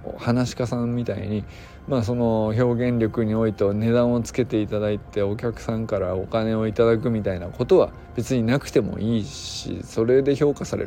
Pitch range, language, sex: 100-135 Hz, Japanese, male